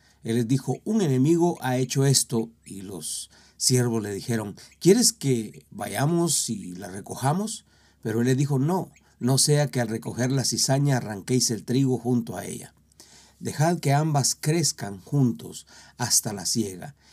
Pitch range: 110-135 Hz